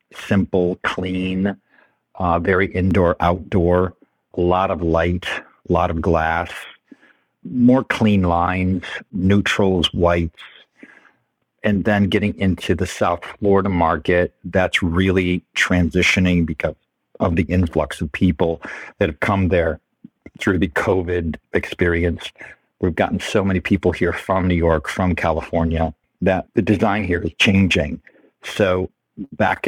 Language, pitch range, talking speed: English, 85-95 Hz, 125 wpm